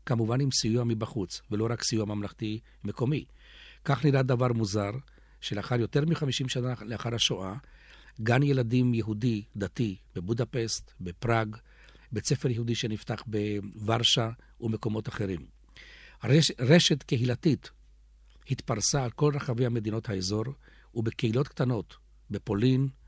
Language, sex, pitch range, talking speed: Hebrew, male, 105-130 Hz, 115 wpm